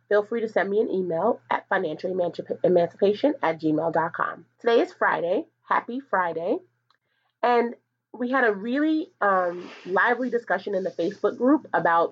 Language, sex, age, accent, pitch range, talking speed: English, female, 30-49, American, 160-205 Hz, 145 wpm